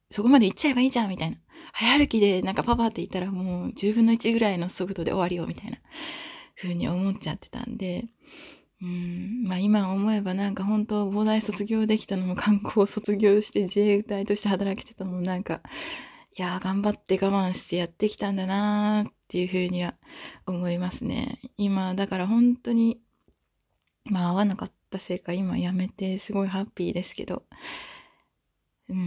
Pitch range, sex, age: 185-230 Hz, female, 20-39